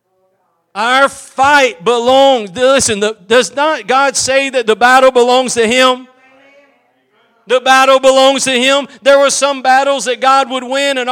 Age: 40-59